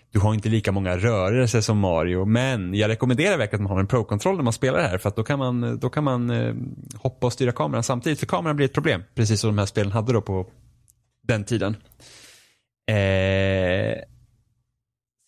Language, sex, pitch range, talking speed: Swedish, male, 105-125 Hz, 200 wpm